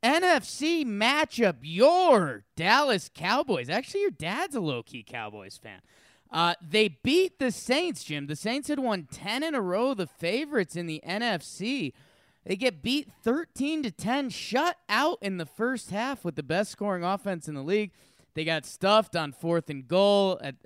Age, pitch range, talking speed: 20-39, 150-215 Hz, 170 wpm